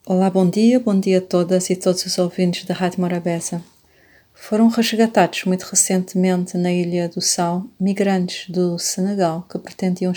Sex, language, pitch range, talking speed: female, Portuguese, 180-200 Hz, 160 wpm